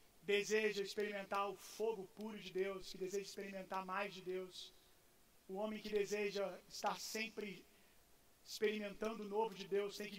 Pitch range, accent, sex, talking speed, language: 190-210 Hz, Brazilian, male, 155 wpm, Gujarati